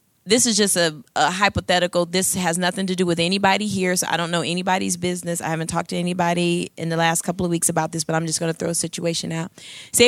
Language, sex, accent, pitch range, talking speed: English, female, American, 175-215 Hz, 255 wpm